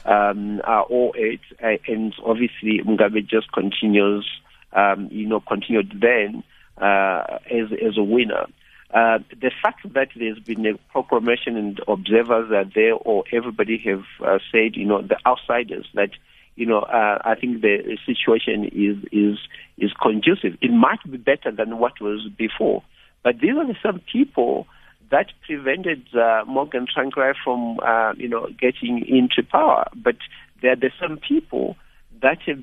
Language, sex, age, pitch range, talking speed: English, male, 50-69, 110-130 Hz, 160 wpm